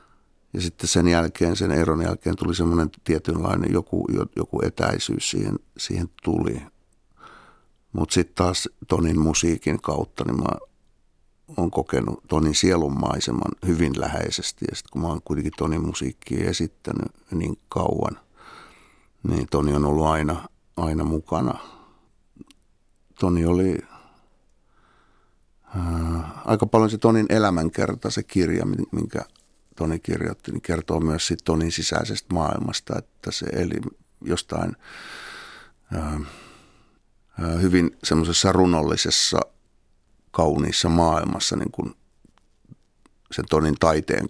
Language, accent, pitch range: Finnish, native, 80-90 Hz